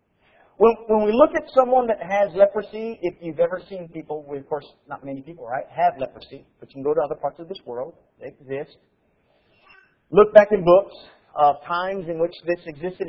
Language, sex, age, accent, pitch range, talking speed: English, male, 40-59, American, 165-230 Hz, 200 wpm